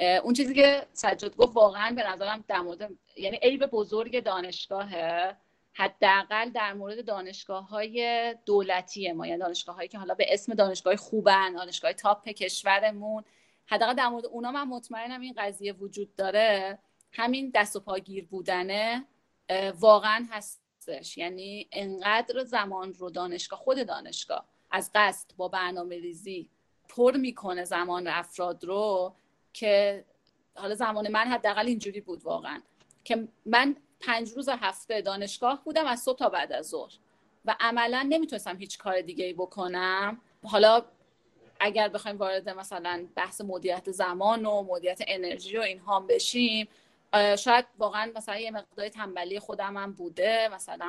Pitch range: 190-230 Hz